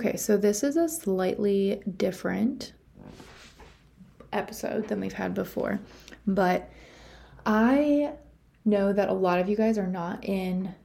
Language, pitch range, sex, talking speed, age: English, 195-220 Hz, female, 135 wpm, 20-39